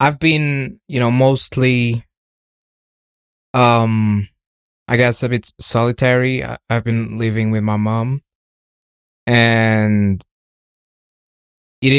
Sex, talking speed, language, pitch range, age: male, 95 wpm, English, 110-125 Hz, 20-39